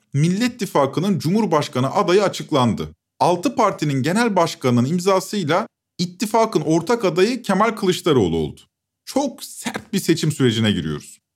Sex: male